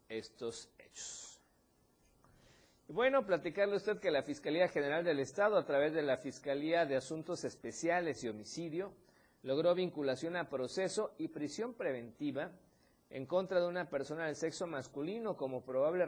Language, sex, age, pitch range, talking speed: Spanish, male, 50-69, 130-175 Hz, 145 wpm